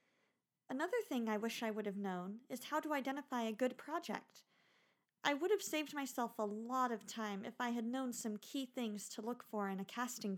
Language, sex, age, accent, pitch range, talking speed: English, female, 50-69, American, 210-270 Hz, 215 wpm